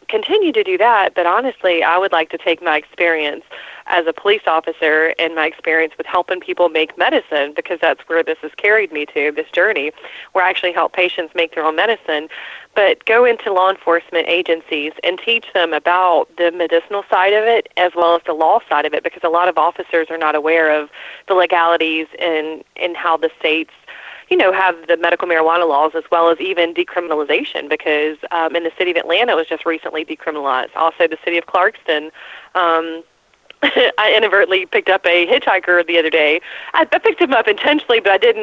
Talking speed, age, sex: 200 wpm, 20-39, female